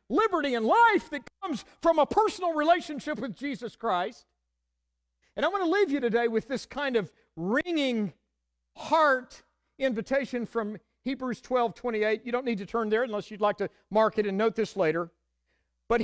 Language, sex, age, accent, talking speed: English, male, 50-69, American, 175 wpm